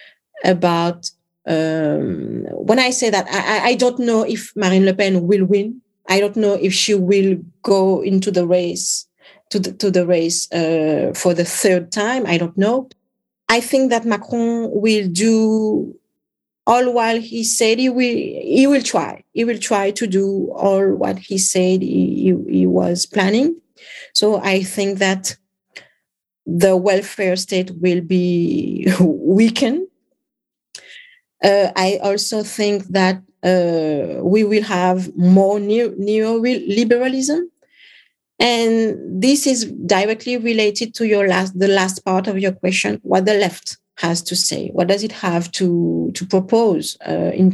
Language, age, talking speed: English, 40-59, 150 wpm